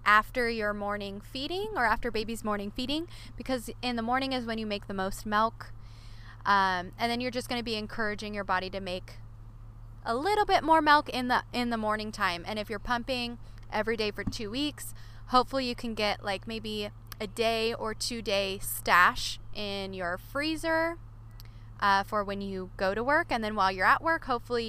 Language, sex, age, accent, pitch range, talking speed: English, female, 20-39, American, 170-245 Hz, 200 wpm